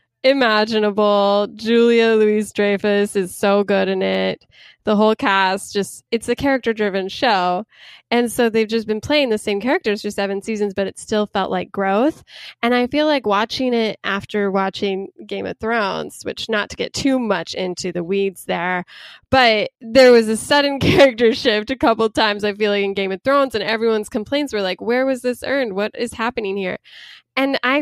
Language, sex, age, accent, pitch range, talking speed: English, female, 10-29, American, 195-230 Hz, 190 wpm